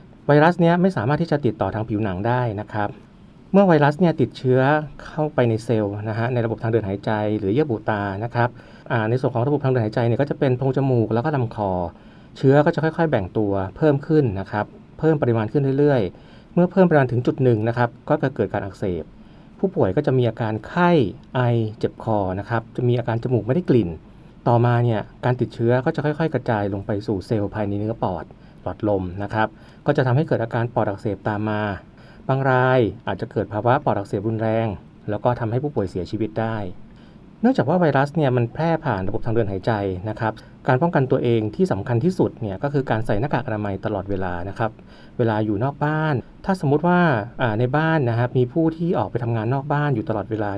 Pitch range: 105-145 Hz